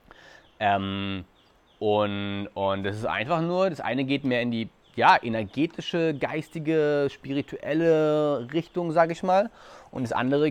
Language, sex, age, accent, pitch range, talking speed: German, male, 30-49, German, 115-170 Hz, 135 wpm